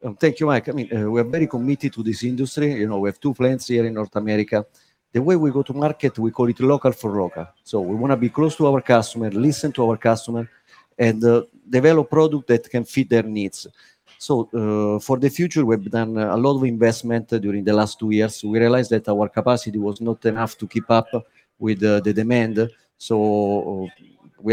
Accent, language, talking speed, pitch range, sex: Italian, English, 220 wpm, 110-130 Hz, male